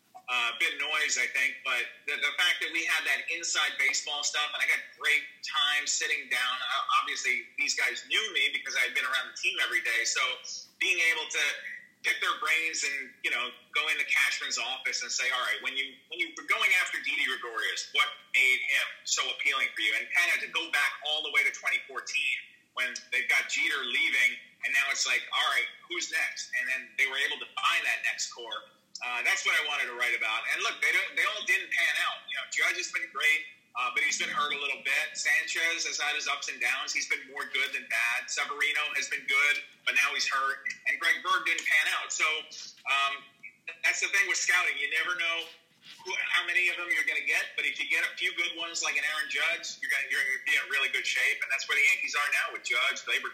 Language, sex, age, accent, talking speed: English, male, 30-49, American, 240 wpm